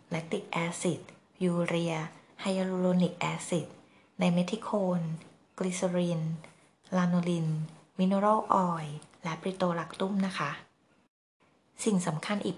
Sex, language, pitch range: female, Thai, 170-205 Hz